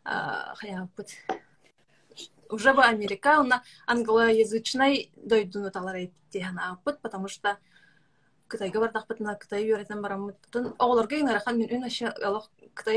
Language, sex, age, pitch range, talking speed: Russian, female, 20-39, 195-235 Hz, 60 wpm